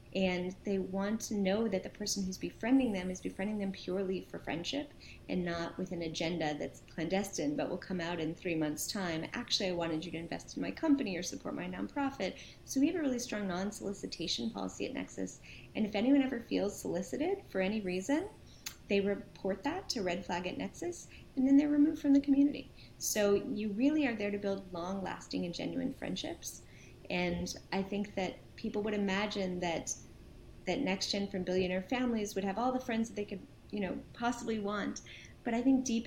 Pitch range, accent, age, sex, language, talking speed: 180-230 Hz, American, 30-49, female, English, 200 wpm